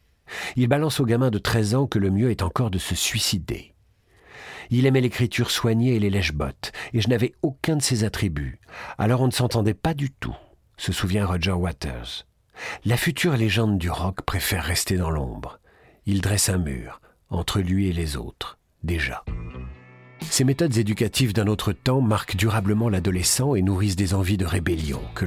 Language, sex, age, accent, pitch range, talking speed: French, male, 50-69, French, 90-125 Hz, 180 wpm